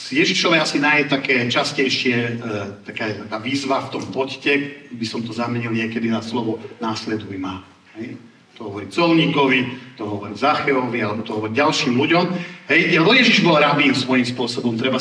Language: Slovak